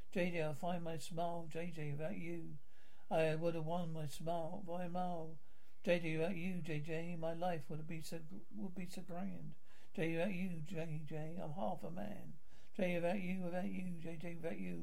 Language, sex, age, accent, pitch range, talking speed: English, male, 60-79, British, 155-185 Hz, 180 wpm